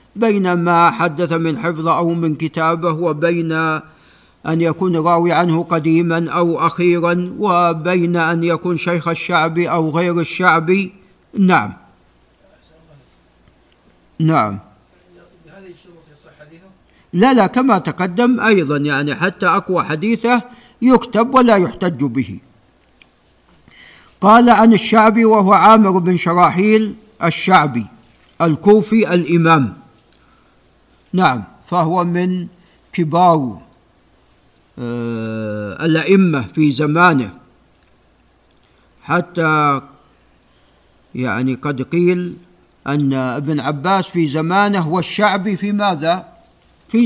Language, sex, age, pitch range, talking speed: Arabic, male, 50-69, 155-190 Hz, 90 wpm